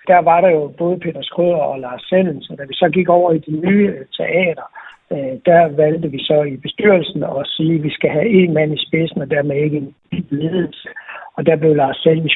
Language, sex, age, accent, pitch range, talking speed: Danish, male, 60-79, native, 145-175 Hz, 225 wpm